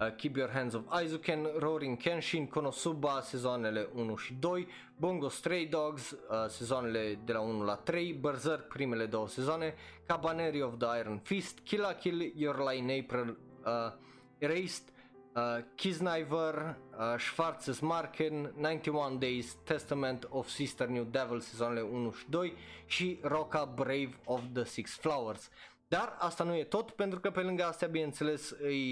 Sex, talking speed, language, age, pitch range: male, 155 wpm, Romanian, 20-39, 120-165 Hz